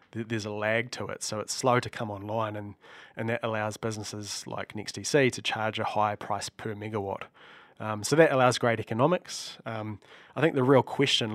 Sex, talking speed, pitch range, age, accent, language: male, 195 wpm, 105-120 Hz, 20-39, Australian, English